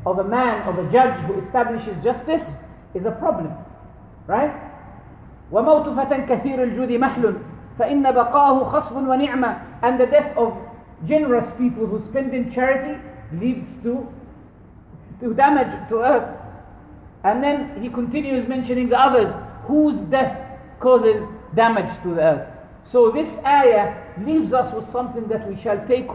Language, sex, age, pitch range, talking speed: English, male, 50-69, 205-260 Hz, 130 wpm